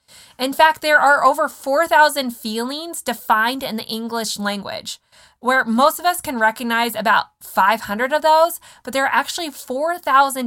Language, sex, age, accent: English, female, 20-39, American